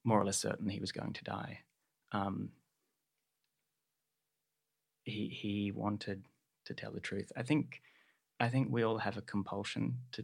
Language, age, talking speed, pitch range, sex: English, 20-39, 160 wpm, 100-115 Hz, male